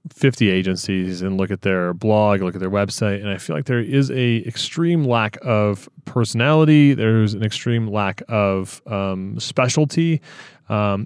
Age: 30-49